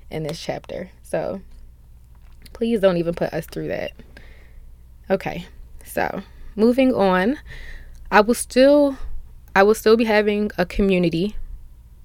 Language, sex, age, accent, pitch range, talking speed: English, female, 20-39, American, 160-200 Hz, 125 wpm